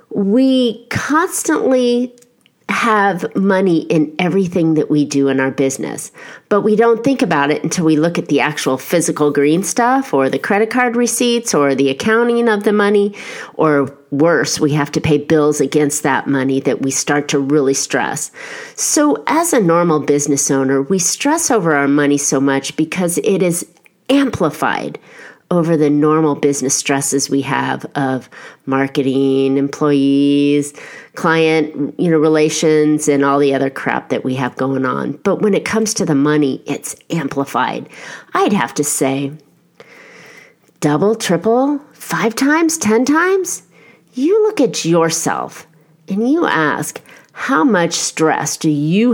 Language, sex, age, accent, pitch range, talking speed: English, female, 40-59, American, 140-215 Hz, 155 wpm